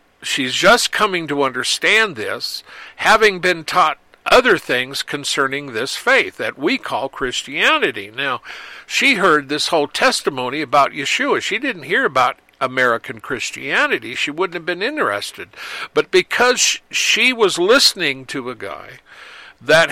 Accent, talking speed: American, 140 wpm